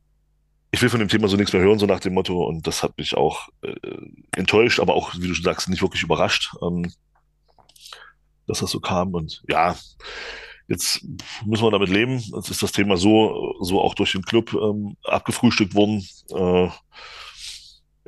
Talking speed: 185 wpm